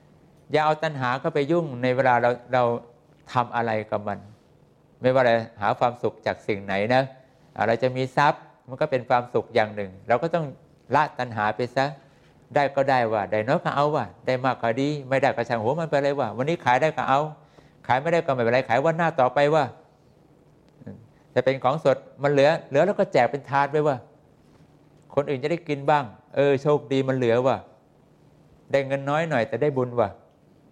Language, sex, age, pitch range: English, male, 60-79, 115-150 Hz